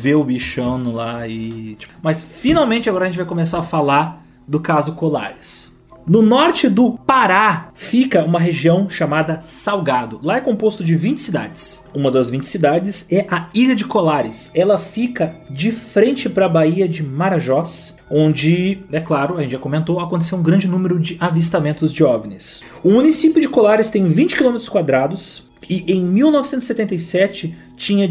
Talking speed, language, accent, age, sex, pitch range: 160 wpm, Portuguese, Brazilian, 30-49, male, 155-210 Hz